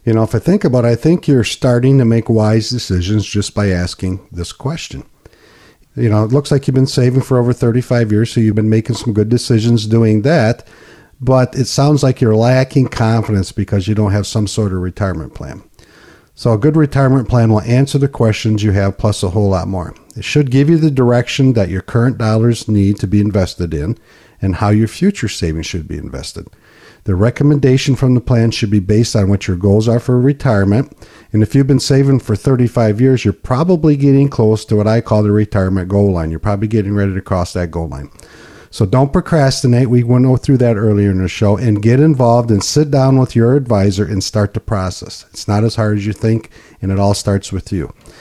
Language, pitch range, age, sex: English, 100-130 Hz, 50-69, male